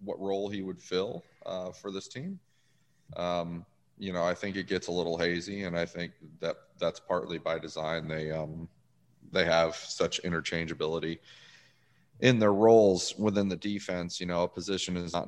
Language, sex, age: English, male, 30-49